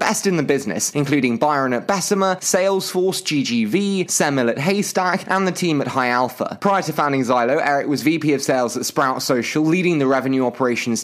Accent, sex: British, male